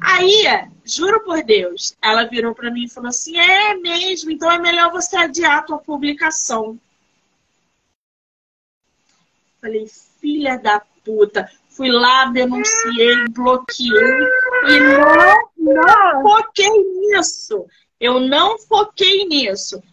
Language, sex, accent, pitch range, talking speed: Portuguese, female, Brazilian, 235-335 Hz, 115 wpm